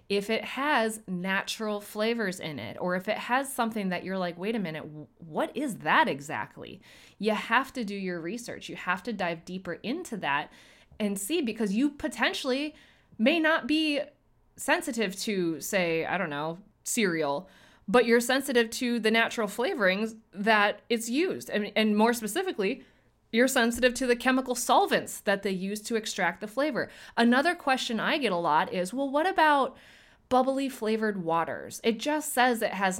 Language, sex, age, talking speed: English, female, 20-39, 175 wpm